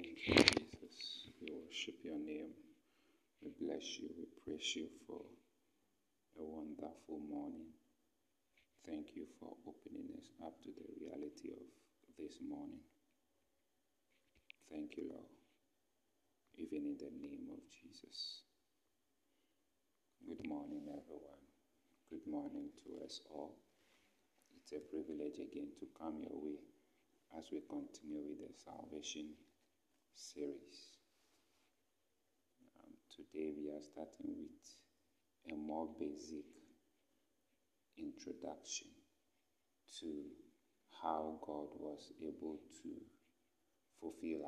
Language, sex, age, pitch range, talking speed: English, male, 50-69, 275-310 Hz, 105 wpm